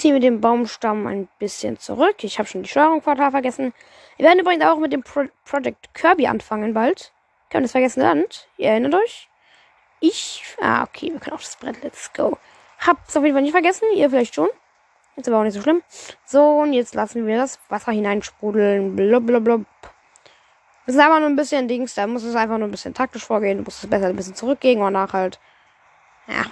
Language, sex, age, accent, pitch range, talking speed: German, female, 10-29, German, 225-300 Hz, 220 wpm